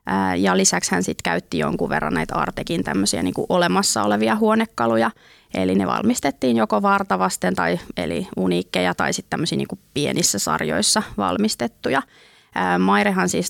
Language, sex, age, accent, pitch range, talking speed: Finnish, female, 20-39, native, 155-195 Hz, 100 wpm